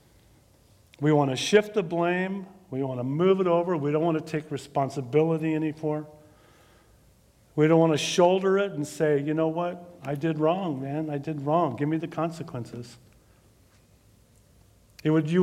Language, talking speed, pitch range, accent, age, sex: English, 165 wpm, 115-150 Hz, American, 50-69, male